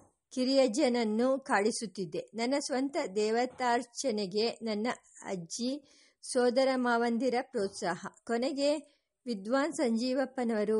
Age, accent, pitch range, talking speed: 50-69, Indian, 220-255 Hz, 80 wpm